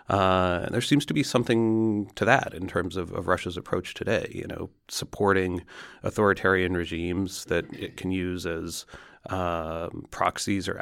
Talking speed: 160 wpm